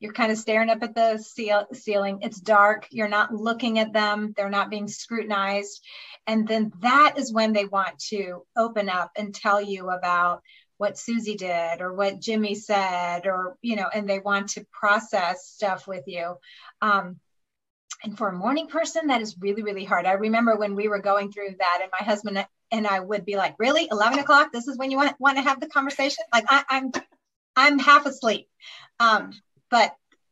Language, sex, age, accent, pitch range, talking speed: English, female, 30-49, American, 205-260 Hz, 190 wpm